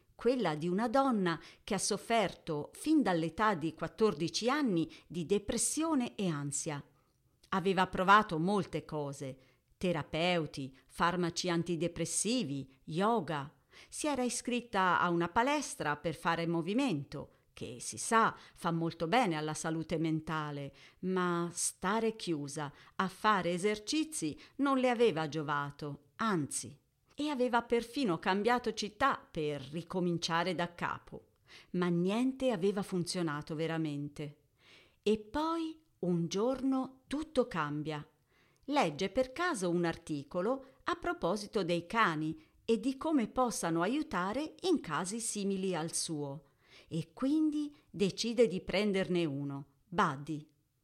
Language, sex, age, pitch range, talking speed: Italian, female, 50-69, 155-230 Hz, 115 wpm